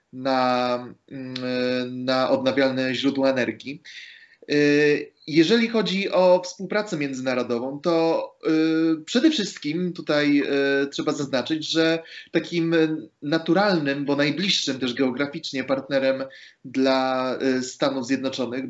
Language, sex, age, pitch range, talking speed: Polish, male, 30-49, 120-145 Hz, 85 wpm